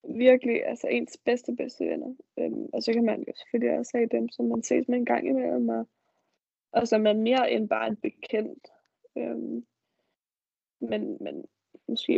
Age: 10-29